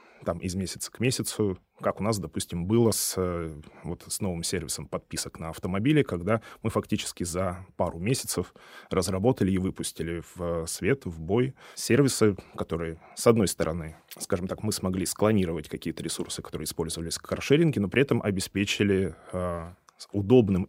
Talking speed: 150 wpm